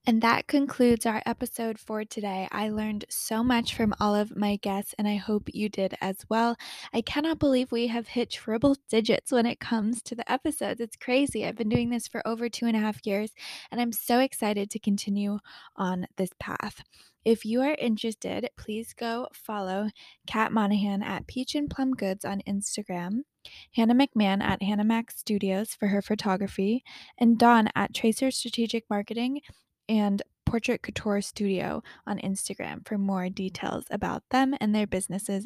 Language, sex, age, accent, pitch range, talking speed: English, female, 10-29, American, 205-240 Hz, 175 wpm